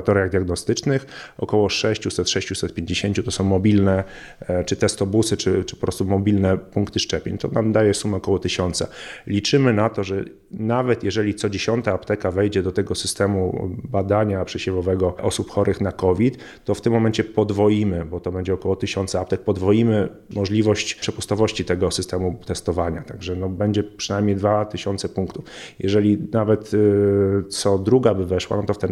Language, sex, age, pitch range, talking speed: Polish, male, 30-49, 95-105 Hz, 155 wpm